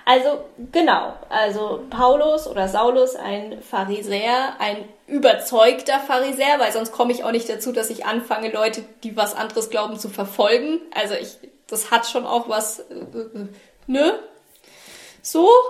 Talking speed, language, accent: 140 wpm, German, German